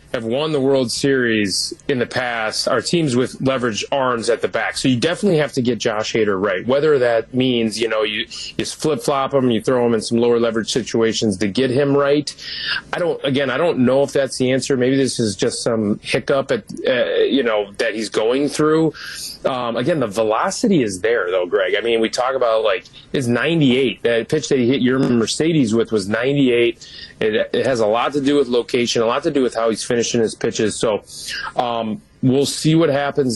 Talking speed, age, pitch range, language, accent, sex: 220 wpm, 30-49, 115-140 Hz, English, American, male